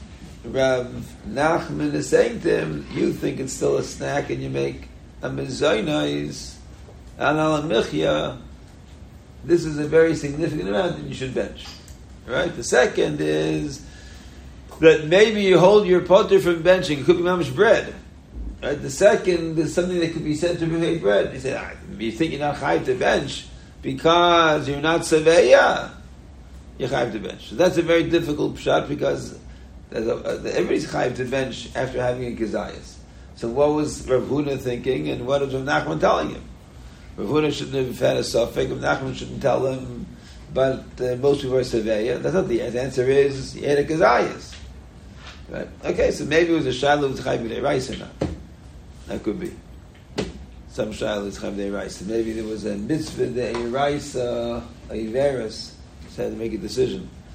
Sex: male